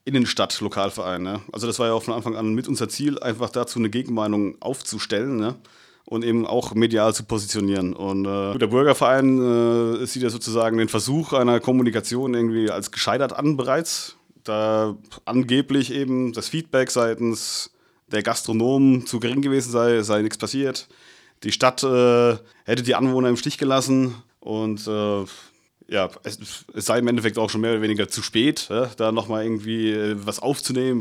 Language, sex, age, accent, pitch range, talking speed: German, male, 30-49, German, 110-130 Hz, 160 wpm